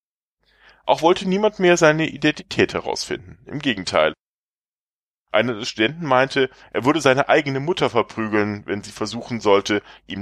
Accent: German